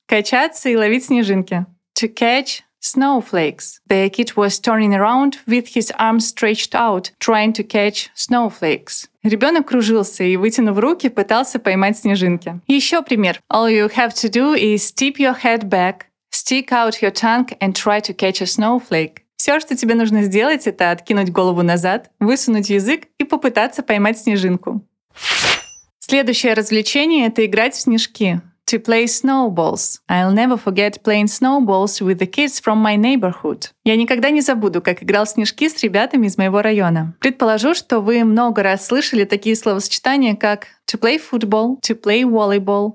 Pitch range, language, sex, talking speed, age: 200-245 Hz, Russian, female, 90 wpm, 20-39